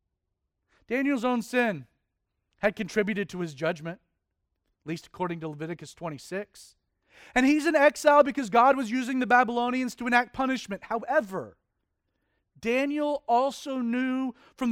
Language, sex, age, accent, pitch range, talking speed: English, male, 40-59, American, 165-275 Hz, 130 wpm